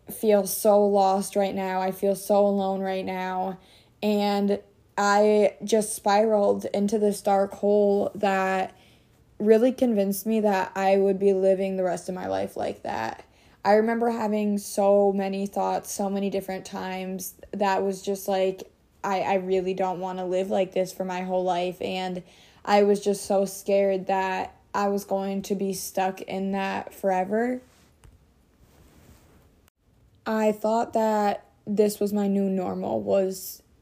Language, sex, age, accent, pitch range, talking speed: English, female, 20-39, American, 190-205 Hz, 155 wpm